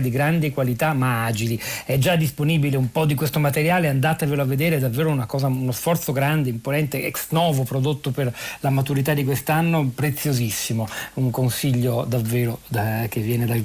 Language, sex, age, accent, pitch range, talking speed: Italian, male, 40-59, native, 125-150 Hz, 175 wpm